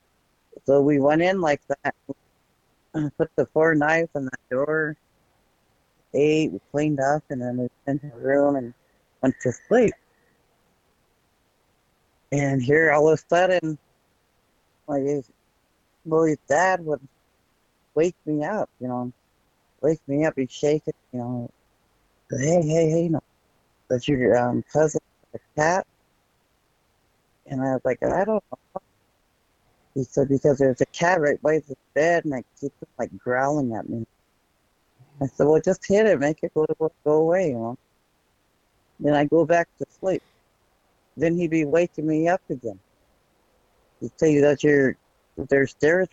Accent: American